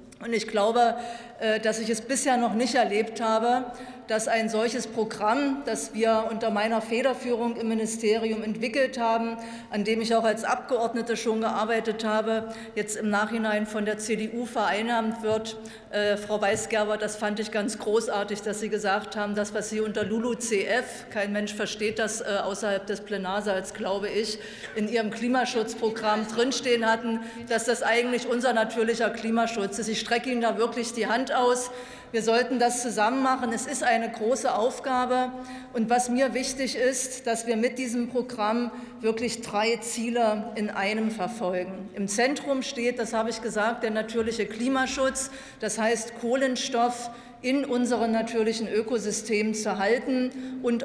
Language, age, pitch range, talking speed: German, 50-69, 215-240 Hz, 160 wpm